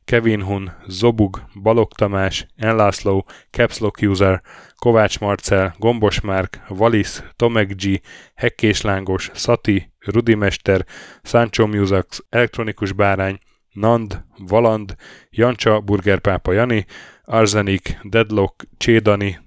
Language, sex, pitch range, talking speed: Hungarian, male, 95-115 Hz, 95 wpm